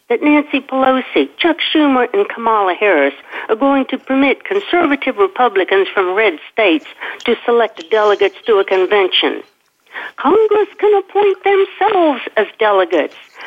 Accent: American